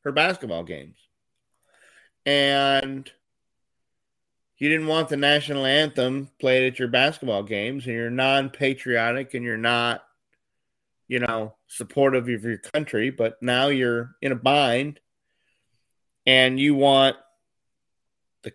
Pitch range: 115-135 Hz